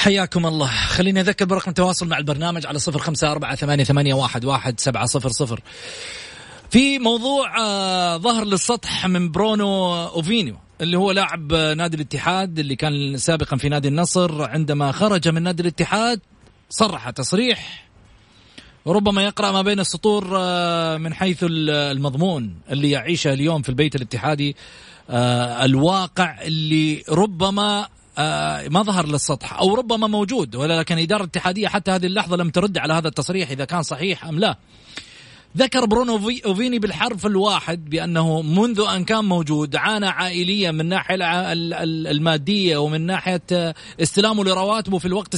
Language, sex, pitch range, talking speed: Arabic, male, 155-200 Hz, 145 wpm